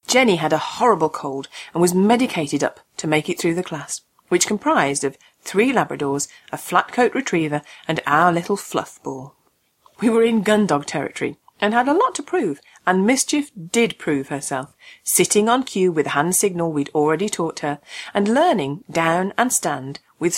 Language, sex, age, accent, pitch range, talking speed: English, female, 40-59, British, 155-220 Hz, 185 wpm